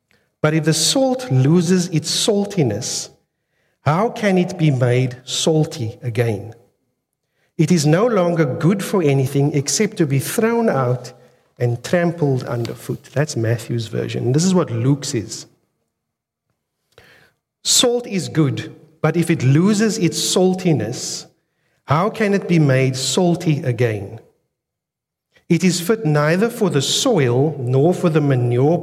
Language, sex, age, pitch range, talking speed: English, male, 50-69, 130-170 Hz, 135 wpm